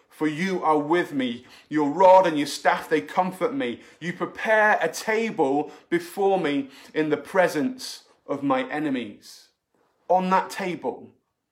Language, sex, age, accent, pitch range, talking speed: English, male, 30-49, British, 150-235 Hz, 145 wpm